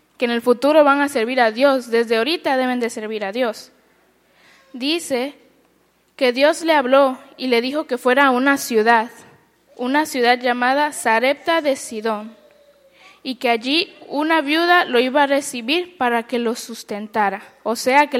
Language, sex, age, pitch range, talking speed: Spanish, female, 10-29, 235-290 Hz, 170 wpm